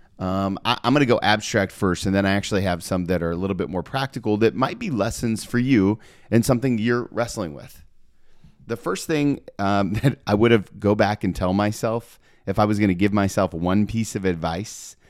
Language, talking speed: English, 225 wpm